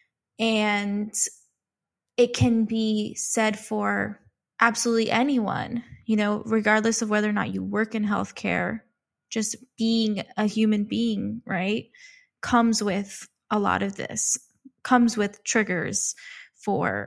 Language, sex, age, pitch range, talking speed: English, female, 10-29, 195-225 Hz, 125 wpm